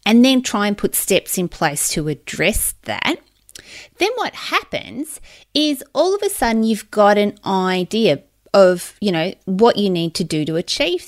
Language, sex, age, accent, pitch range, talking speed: English, female, 30-49, Australian, 180-255 Hz, 170 wpm